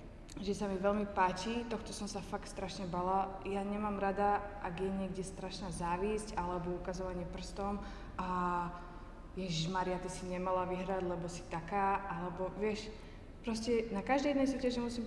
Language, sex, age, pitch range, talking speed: Slovak, female, 20-39, 190-220 Hz, 160 wpm